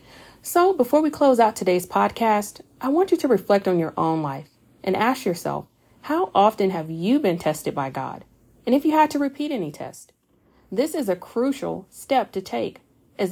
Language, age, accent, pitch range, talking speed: English, 40-59, American, 165-225 Hz, 195 wpm